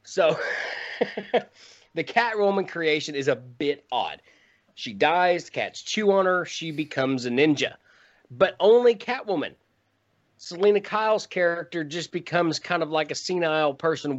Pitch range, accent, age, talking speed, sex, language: 125-170 Hz, American, 30-49, 135 wpm, male, English